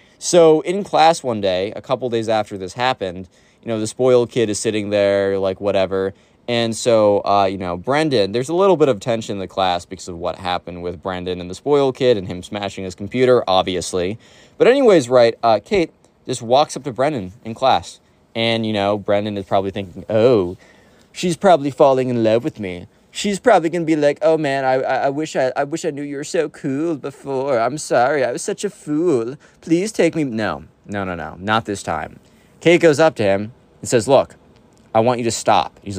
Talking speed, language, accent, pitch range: 220 wpm, English, American, 100-140 Hz